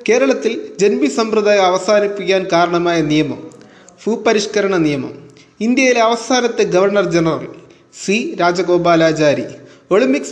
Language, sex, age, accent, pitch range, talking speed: Malayalam, male, 20-39, native, 175-220 Hz, 85 wpm